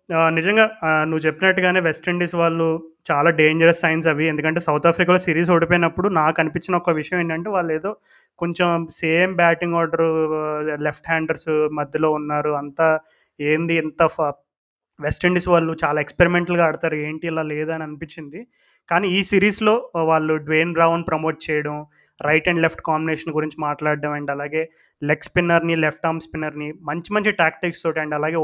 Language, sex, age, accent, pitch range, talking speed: Telugu, male, 20-39, native, 155-180 Hz, 145 wpm